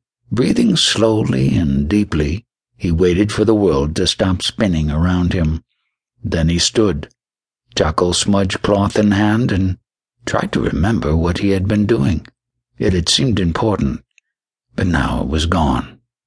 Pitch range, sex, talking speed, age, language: 90-110 Hz, male, 150 wpm, 60-79, English